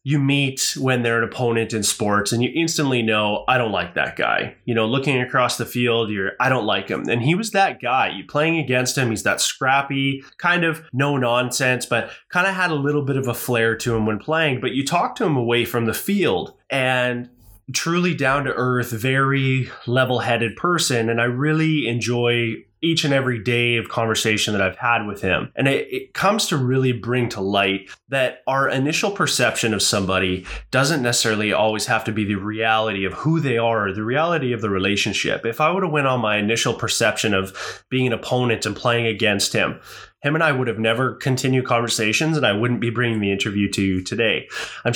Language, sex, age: English, male, 20-39